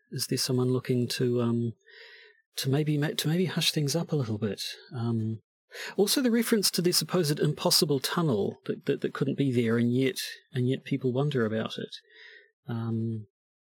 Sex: male